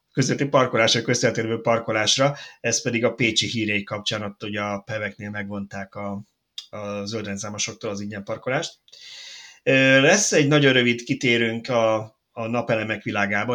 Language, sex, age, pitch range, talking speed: Hungarian, male, 30-49, 105-135 Hz, 130 wpm